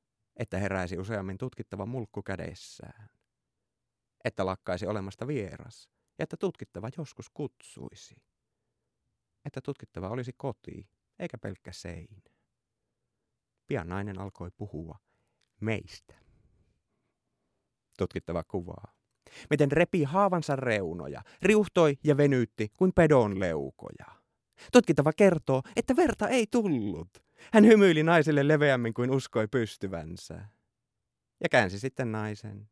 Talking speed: 105 wpm